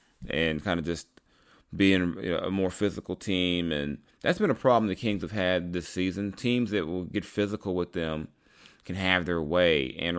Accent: American